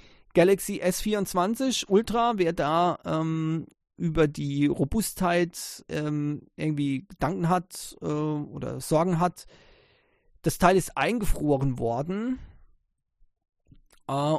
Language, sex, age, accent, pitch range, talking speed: English, male, 40-59, German, 145-180 Hz, 95 wpm